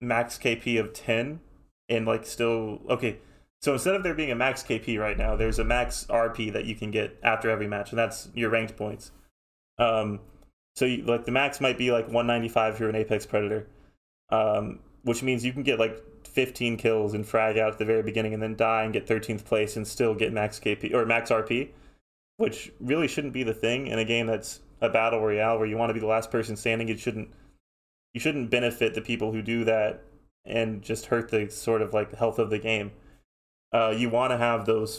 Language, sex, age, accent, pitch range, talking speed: English, male, 20-39, American, 110-120 Hz, 220 wpm